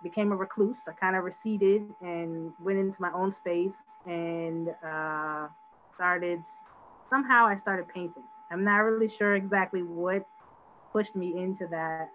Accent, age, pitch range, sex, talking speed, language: American, 20-39, 170-245 Hz, female, 150 wpm, English